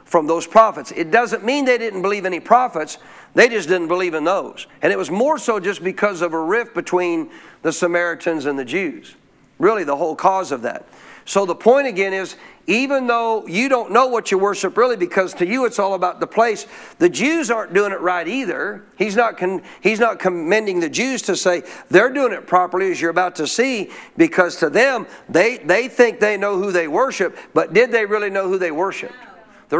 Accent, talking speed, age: American, 215 wpm, 50-69